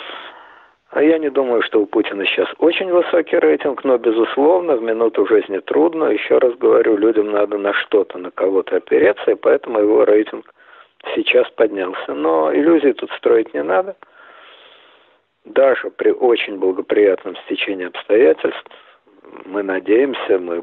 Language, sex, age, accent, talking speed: Russian, male, 50-69, native, 140 wpm